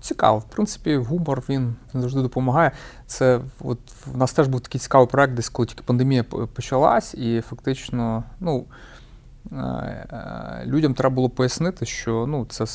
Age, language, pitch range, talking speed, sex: 30-49, Ukrainian, 115-140 Hz, 145 wpm, male